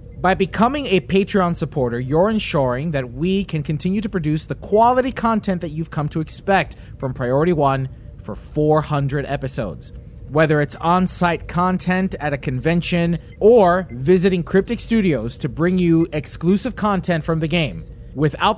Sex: male